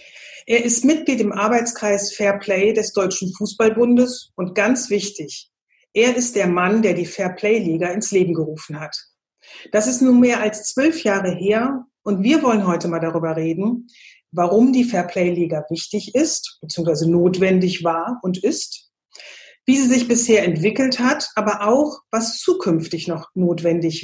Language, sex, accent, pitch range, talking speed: German, female, German, 190-240 Hz, 155 wpm